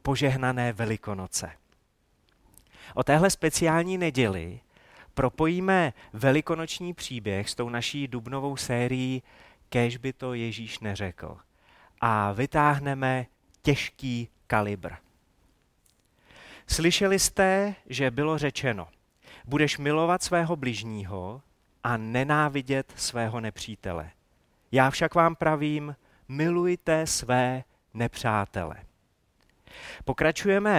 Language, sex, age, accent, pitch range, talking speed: Czech, male, 30-49, native, 110-155 Hz, 85 wpm